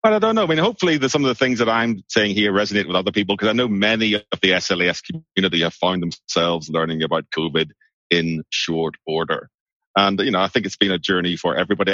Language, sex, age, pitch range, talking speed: English, male, 30-49, 85-105 Hz, 240 wpm